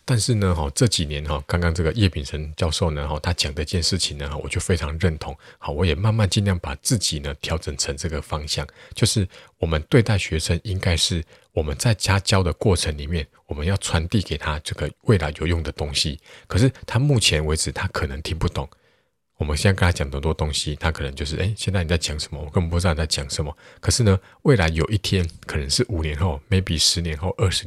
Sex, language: male, Chinese